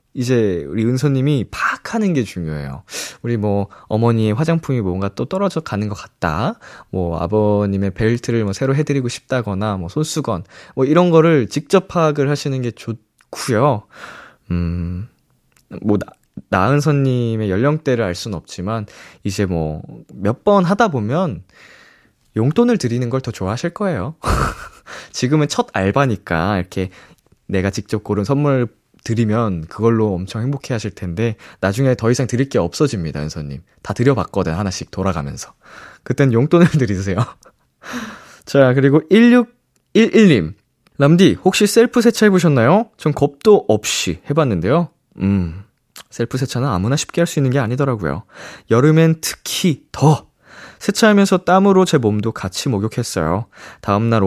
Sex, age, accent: male, 20-39, native